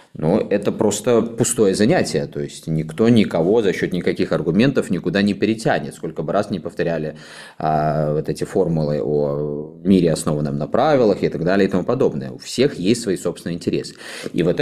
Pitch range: 80-105 Hz